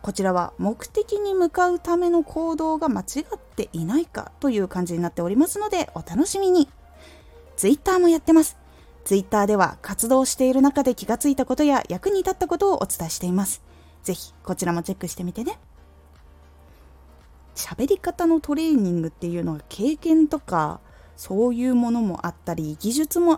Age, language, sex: 20-39, Japanese, female